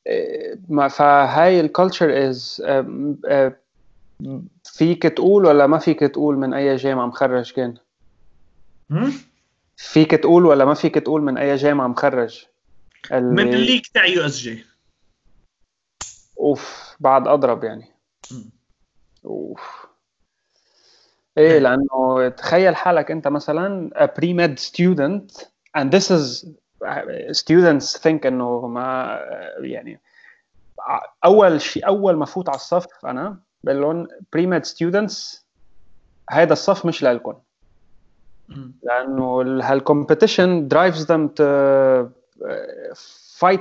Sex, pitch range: male, 135-180 Hz